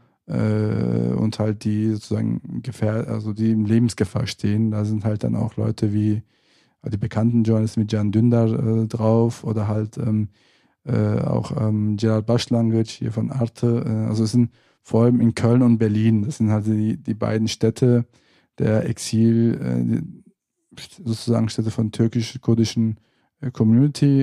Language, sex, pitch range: German, male, 110-120 Hz